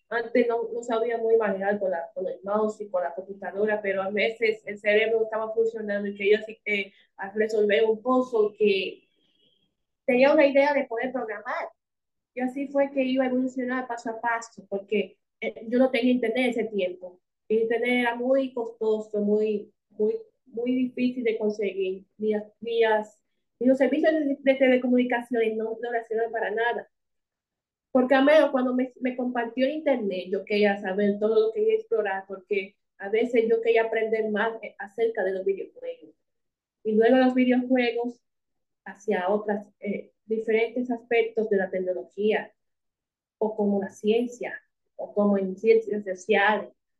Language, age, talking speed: Spanish, 20-39, 155 wpm